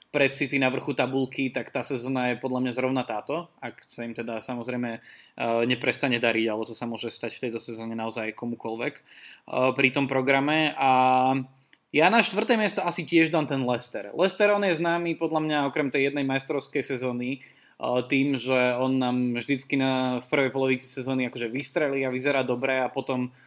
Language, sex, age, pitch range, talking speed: Slovak, male, 20-39, 125-140 Hz, 170 wpm